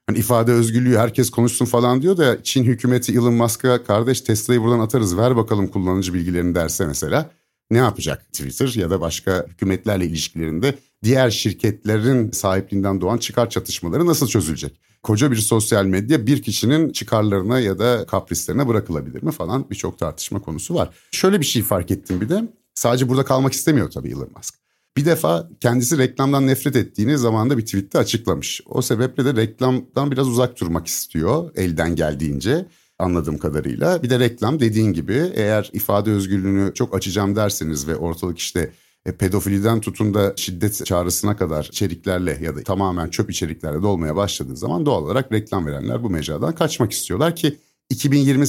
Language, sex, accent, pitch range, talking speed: Turkish, male, native, 95-125 Hz, 160 wpm